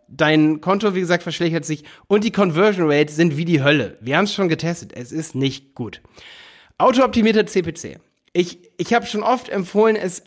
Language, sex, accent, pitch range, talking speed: German, male, German, 145-195 Hz, 180 wpm